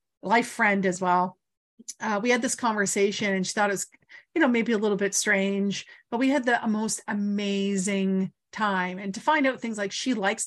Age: 40-59